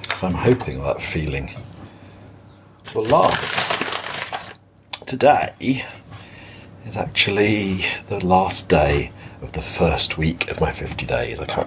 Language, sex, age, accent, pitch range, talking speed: English, male, 40-59, British, 85-110 Hz, 115 wpm